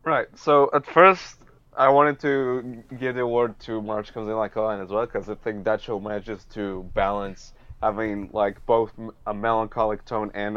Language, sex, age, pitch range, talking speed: English, male, 20-39, 100-125 Hz, 210 wpm